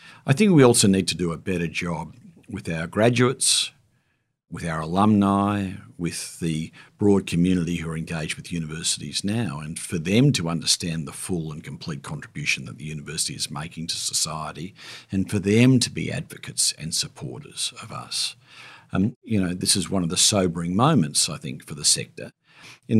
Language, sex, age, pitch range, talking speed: English, male, 50-69, 85-110 Hz, 180 wpm